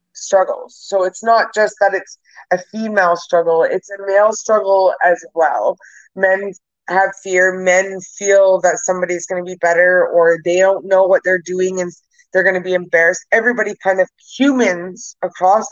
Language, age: English, 20-39